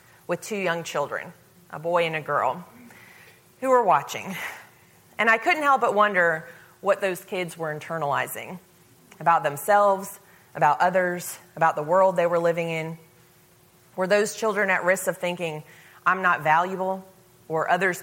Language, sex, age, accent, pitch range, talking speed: English, female, 30-49, American, 165-215 Hz, 155 wpm